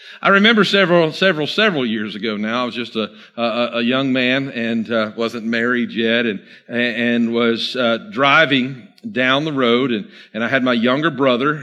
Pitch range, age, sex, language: 115-145 Hz, 50-69, male, English